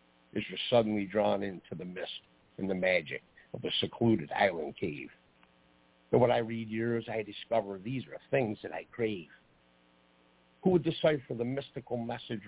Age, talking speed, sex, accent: 50-69, 165 wpm, male, American